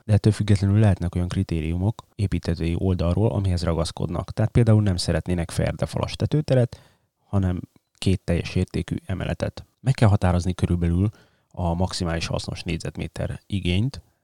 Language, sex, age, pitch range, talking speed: Hungarian, male, 30-49, 85-105 Hz, 125 wpm